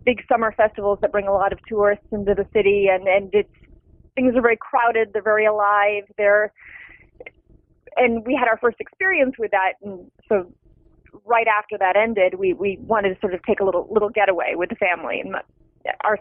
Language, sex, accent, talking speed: English, female, American, 195 wpm